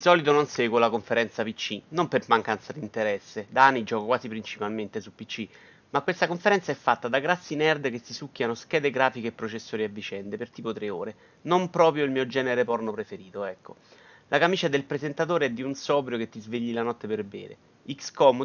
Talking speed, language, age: 210 wpm, Italian, 30-49